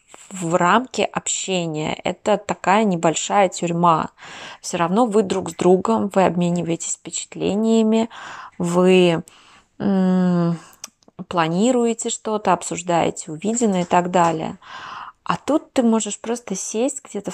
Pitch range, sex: 175-215 Hz, female